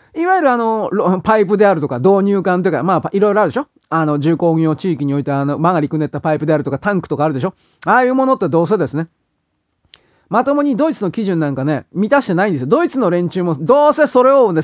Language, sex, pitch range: Japanese, male, 160-235 Hz